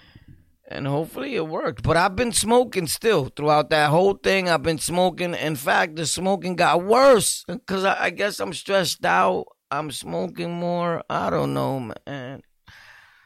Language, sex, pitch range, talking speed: English, male, 135-175 Hz, 165 wpm